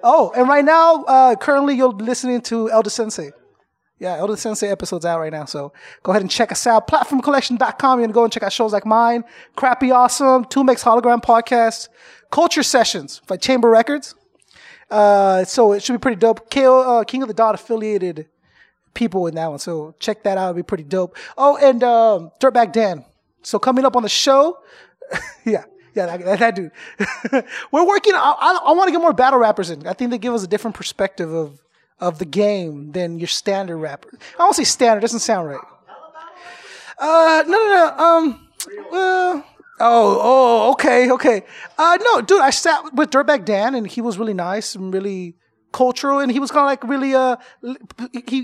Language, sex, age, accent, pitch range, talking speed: English, male, 20-39, American, 205-265 Hz, 200 wpm